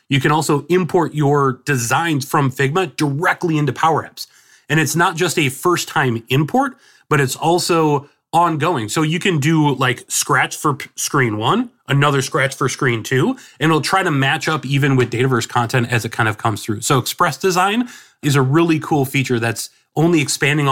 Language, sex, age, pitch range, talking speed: English, male, 30-49, 125-155 Hz, 185 wpm